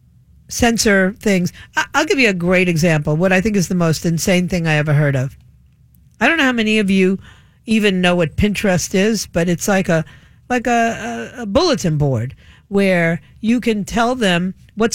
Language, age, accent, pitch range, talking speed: English, 50-69, American, 160-210 Hz, 190 wpm